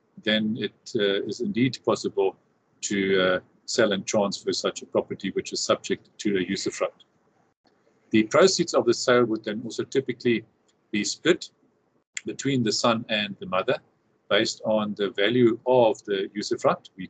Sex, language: male, English